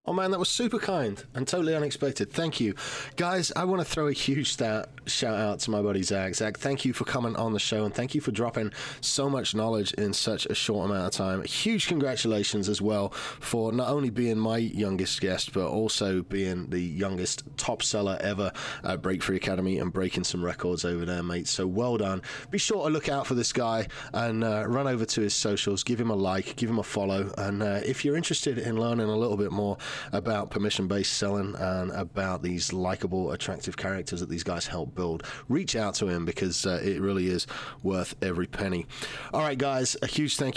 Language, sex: English, male